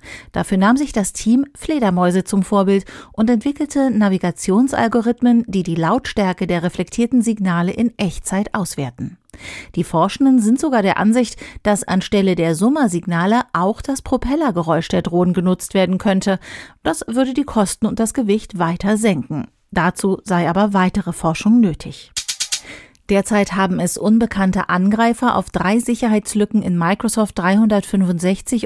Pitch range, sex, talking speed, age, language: 185-230 Hz, female, 135 wpm, 40-59, German